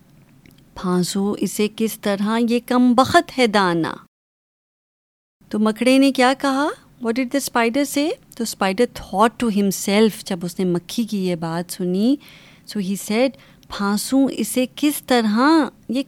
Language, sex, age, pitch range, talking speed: Urdu, female, 30-49, 195-255 Hz, 150 wpm